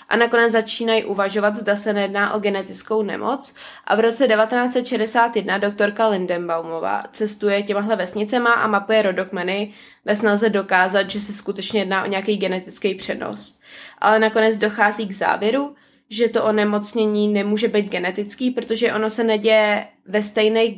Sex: female